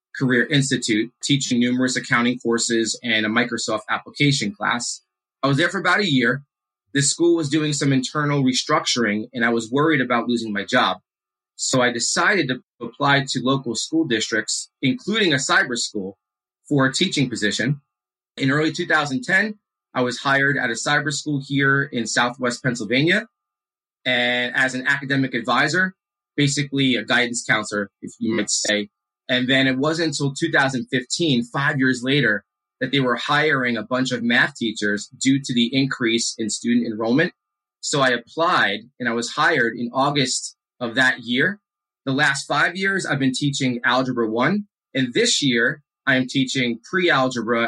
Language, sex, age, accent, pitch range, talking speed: English, male, 30-49, American, 115-140 Hz, 165 wpm